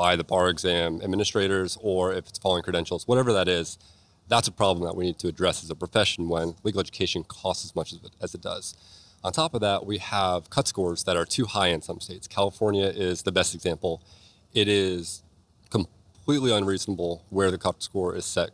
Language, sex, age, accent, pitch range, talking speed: English, male, 30-49, American, 90-100 Hz, 210 wpm